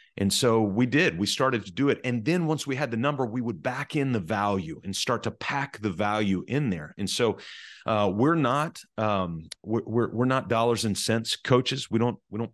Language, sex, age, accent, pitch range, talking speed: English, male, 30-49, American, 100-125 Hz, 230 wpm